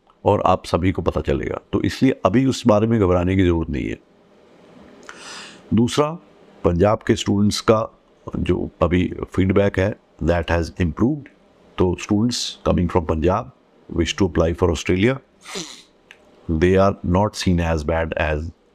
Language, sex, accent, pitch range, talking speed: Hindi, male, native, 85-110 Hz, 145 wpm